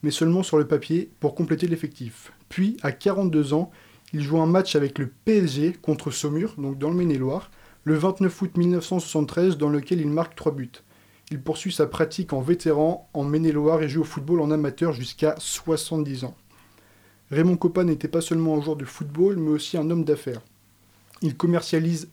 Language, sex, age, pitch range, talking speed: French, male, 20-39, 145-170 Hz, 185 wpm